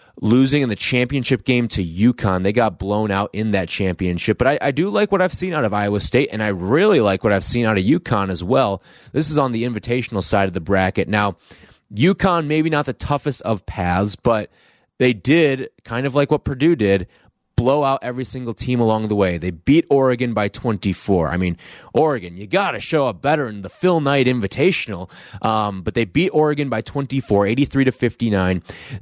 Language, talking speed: English, 200 wpm